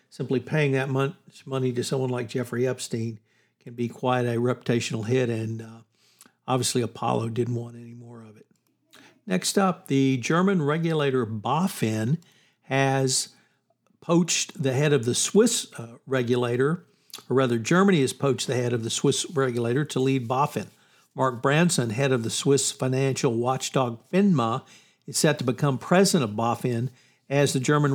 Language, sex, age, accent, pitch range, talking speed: English, male, 60-79, American, 125-145 Hz, 160 wpm